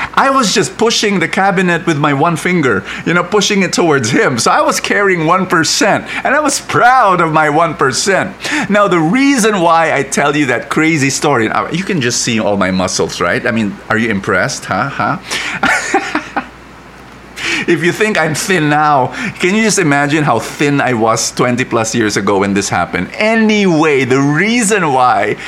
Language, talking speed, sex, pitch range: English, 185 wpm, male, 140-195 Hz